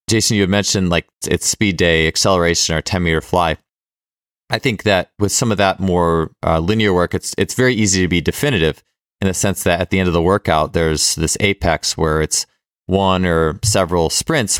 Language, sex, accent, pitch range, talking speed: English, male, American, 85-100 Hz, 200 wpm